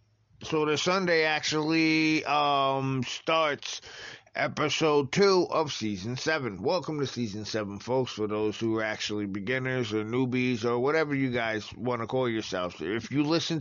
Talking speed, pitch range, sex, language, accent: 155 wpm, 110-145 Hz, male, English, American